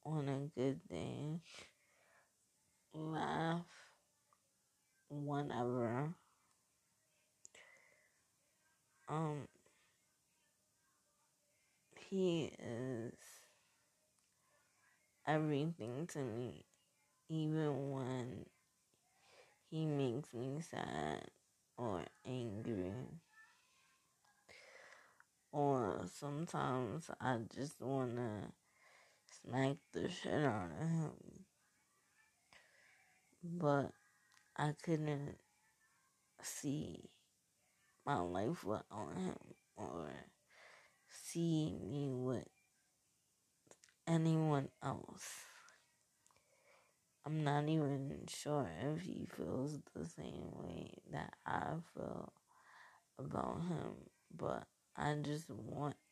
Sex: female